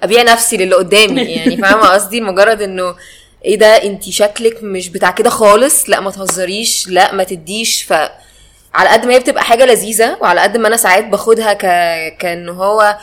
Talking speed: 180 wpm